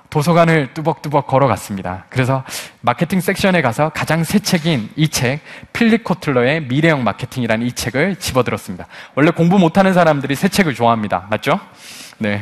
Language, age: Korean, 20-39